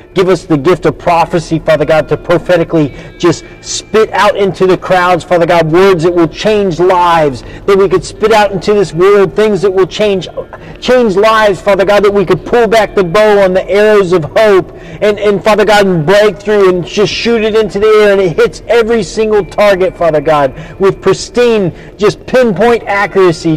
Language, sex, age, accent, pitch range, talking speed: English, male, 40-59, American, 125-195 Hz, 200 wpm